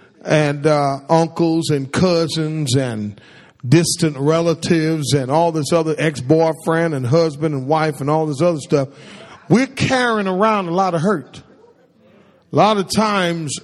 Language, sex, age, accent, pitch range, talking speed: English, male, 40-59, American, 150-190 Hz, 145 wpm